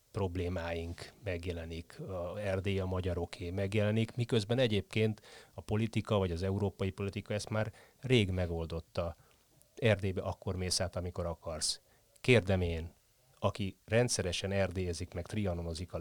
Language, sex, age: Hungarian, male, 30-49